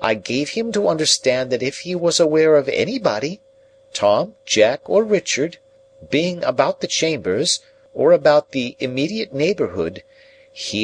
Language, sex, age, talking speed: English, male, 50-69, 145 wpm